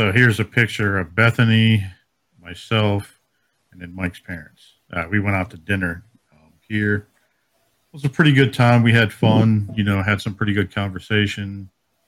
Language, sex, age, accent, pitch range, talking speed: English, male, 50-69, American, 90-110 Hz, 175 wpm